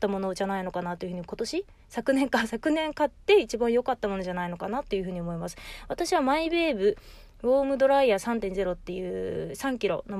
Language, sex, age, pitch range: Japanese, female, 20-39, 195-280 Hz